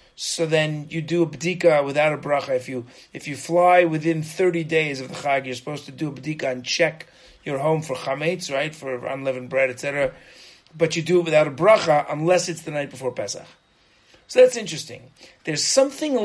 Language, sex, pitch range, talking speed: English, male, 130-170 Hz, 205 wpm